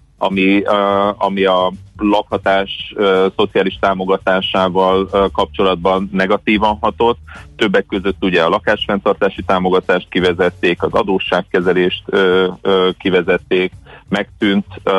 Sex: male